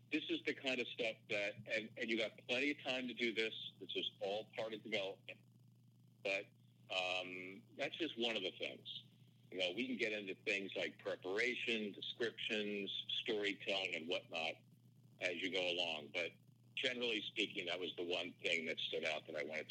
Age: 50-69